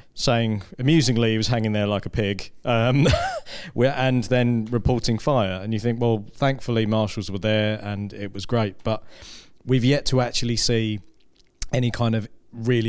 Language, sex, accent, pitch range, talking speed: English, male, British, 105-125 Hz, 170 wpm